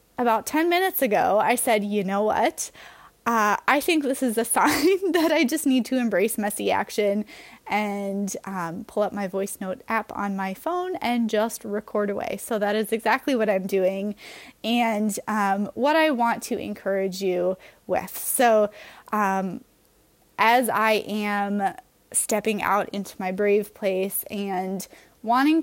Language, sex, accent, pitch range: English, female, American, 195-235 Hz